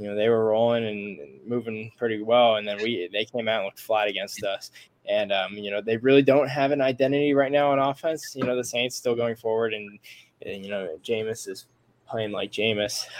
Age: 10-29